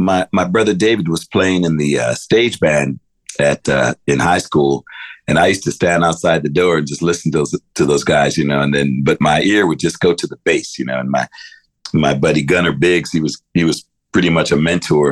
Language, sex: English, male